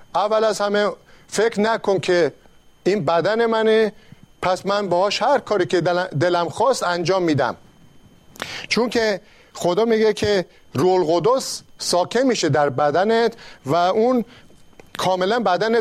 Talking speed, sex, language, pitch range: 130 wpm, male, Persian, 160-215 Hz